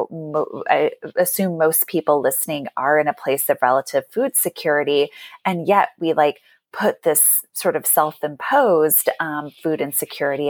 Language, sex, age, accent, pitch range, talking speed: English, female, 20-39, American, 150-195 Hz, 135 wpm